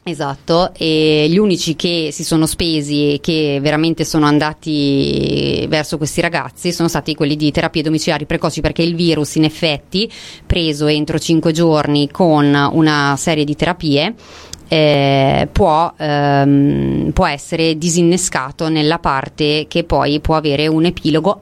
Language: Italian